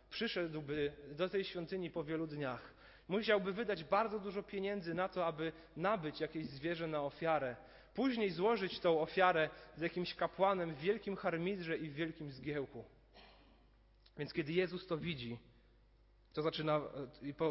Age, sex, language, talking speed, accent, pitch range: 30-49, male, Polish, 145 wpm, native, 130-175 Hz